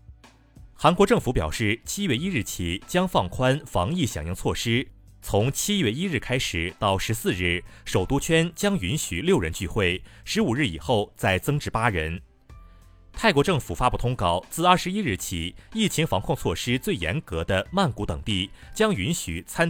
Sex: male